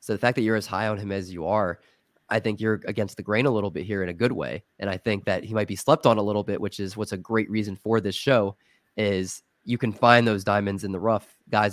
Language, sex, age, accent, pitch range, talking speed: English, male, 20-39, American, 100-115 Hz, 290 wpm